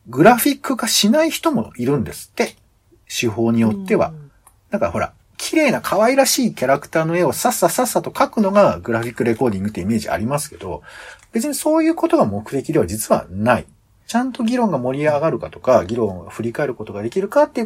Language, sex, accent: Japanese, male, native